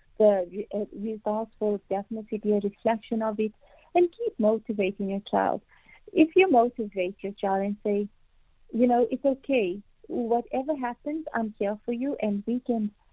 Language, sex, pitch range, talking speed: English, female, 210-240 Hz, 155 wpm